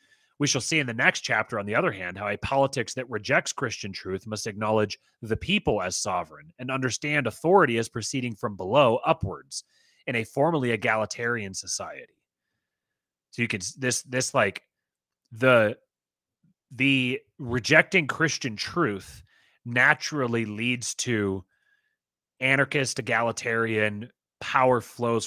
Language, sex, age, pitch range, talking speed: English, male, 30-49, 105-130 Hz, 130 wpm